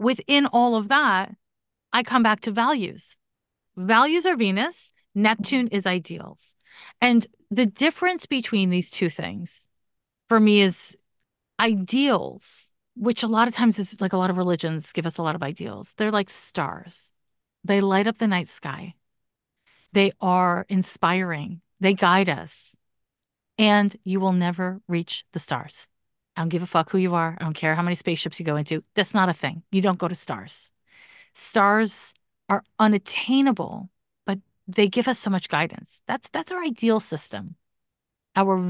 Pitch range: 175-230 Hz